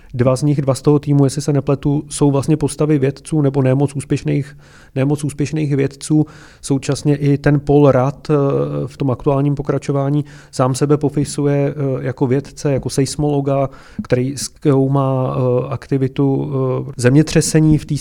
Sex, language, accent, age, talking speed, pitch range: male, Czech, native, 30-49, 140 wpm, 135-150 Hz